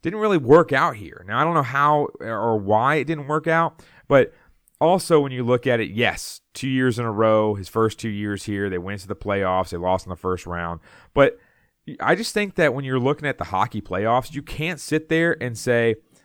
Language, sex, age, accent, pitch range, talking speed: English, male, 30-49, American, 95-135 Hz, 235 wpm